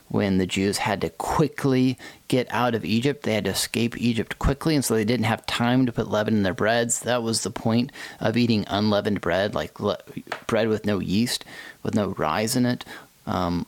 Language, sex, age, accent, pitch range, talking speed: English, male, 30-49, American, 100-125 Hz, 210 wpm